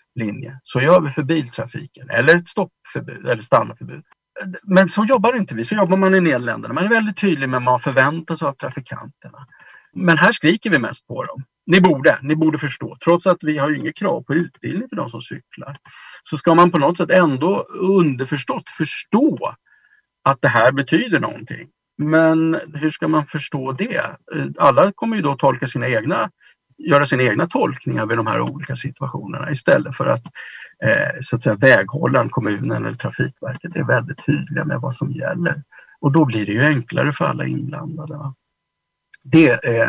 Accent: Norwegian